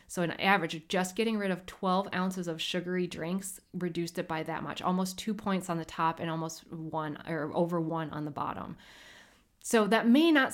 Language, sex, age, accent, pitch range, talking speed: English, female, 20-39, American, 170-220 Hz, 210 wpm